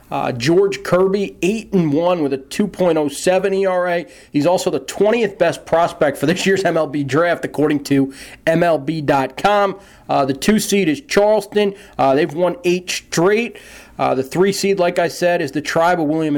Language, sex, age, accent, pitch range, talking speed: English, male, 40-59, American, 140-185 Hz, 155 wpm